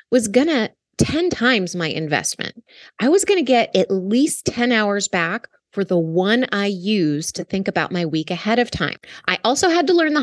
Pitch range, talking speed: 175-240 Hz, 200 wpm